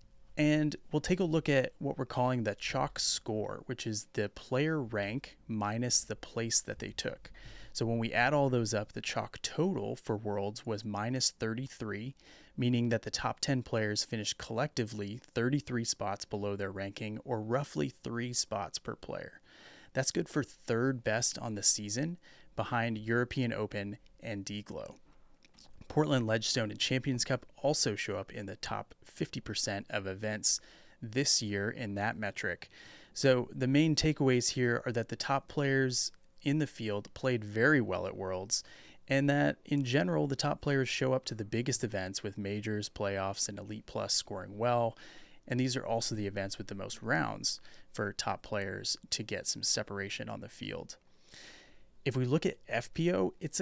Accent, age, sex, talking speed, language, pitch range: American, 30-49, male, 170 wpm, English, 105-135 Hz